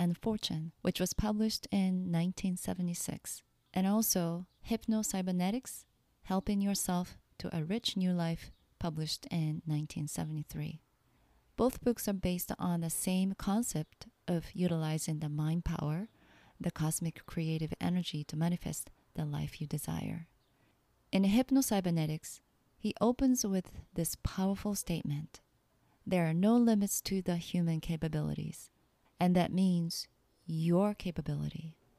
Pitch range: 160-195 Hz